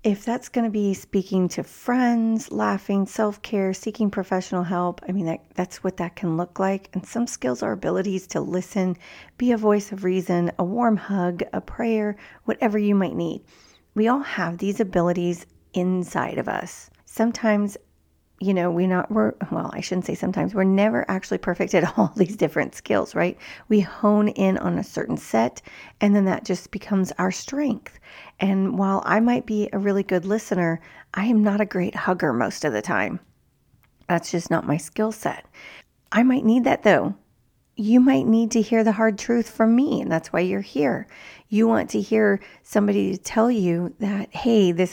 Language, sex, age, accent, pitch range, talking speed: English, female, 40-59, American, 180-215 Hz, 185 wpm